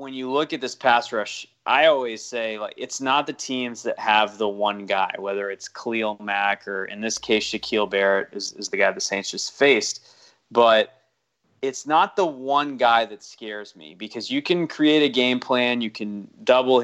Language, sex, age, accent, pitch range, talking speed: English, male, 20-39, American, 105-125 Hz, 205 wpm